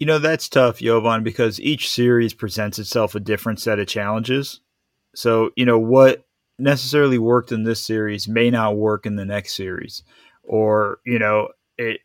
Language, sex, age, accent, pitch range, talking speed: English, male, 30-49, American, 110-125 Hz, 175 wpm